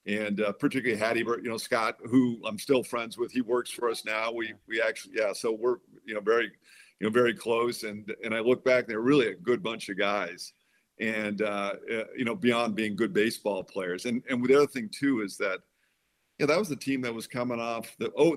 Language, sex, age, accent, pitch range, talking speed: English, male, 50-69, American, 105-125 Hz, 230 wpm